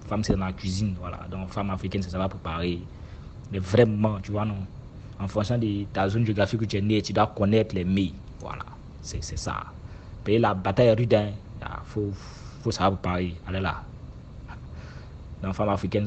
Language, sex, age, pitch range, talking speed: French, male, 30-49, 95-110 Hz, 185 wpm